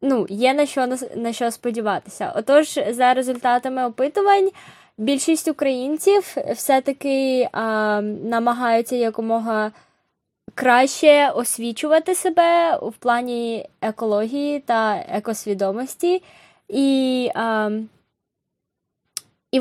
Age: 20-39